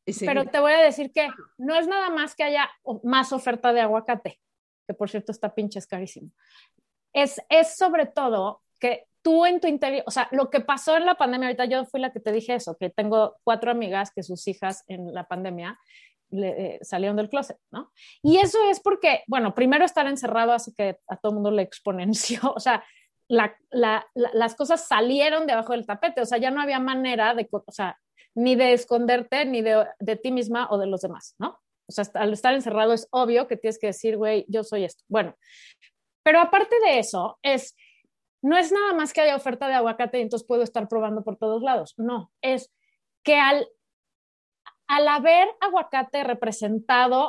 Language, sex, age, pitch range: Spanish, female, 30-49, 215-285 Hz